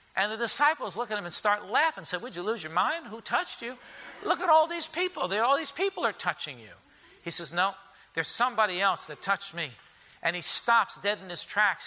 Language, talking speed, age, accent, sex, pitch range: English, 235 wpm, 50-69, American, male, 155-205 Hz